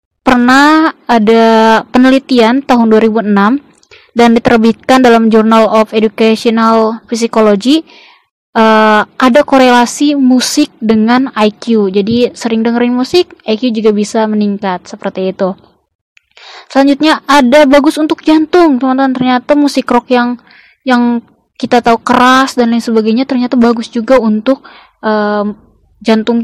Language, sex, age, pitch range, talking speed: Indonesian, female, 20-39, 220-260 Hz, 115 wpm